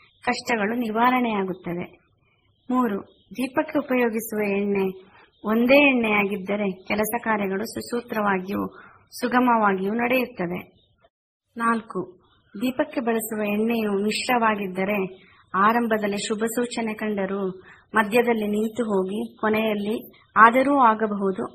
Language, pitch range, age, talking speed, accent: Kannada, 195-235 Hz, 20-39, 75 wpm, native